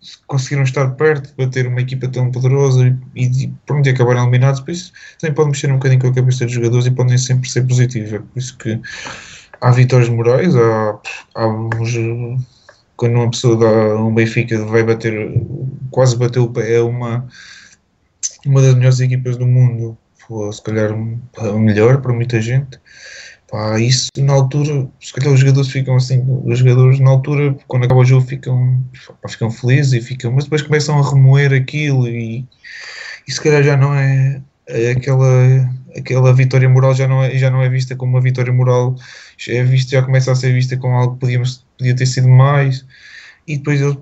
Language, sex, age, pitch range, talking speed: Portuguese, male, 20-39, 120-135 Hz, 190 wpm